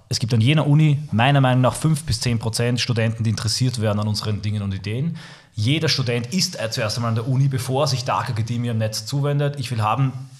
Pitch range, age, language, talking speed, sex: 115-140 Hz, 30-49, German, 230 wpm, male